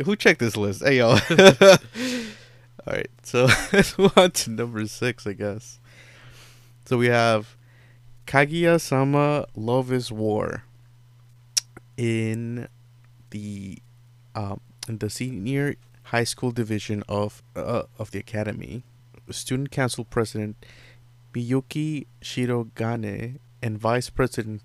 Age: 20-39